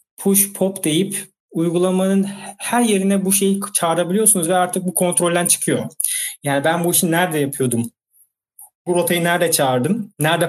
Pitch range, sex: 150-195 Hz, male